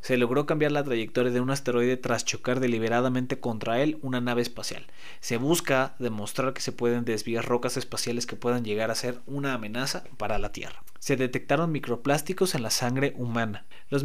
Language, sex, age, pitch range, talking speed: Spanish, male, 30-49, 120-150 Hz, 185 wpm